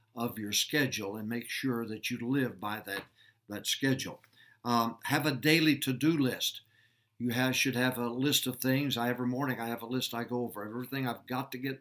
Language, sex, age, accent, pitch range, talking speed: English, male, 60-79, American, 115-130 Hz, 215 wpm